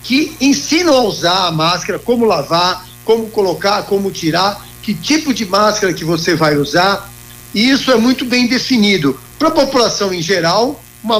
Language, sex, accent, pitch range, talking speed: Portuguese, male, Brazilian, 165-225 Hz, 170 wpm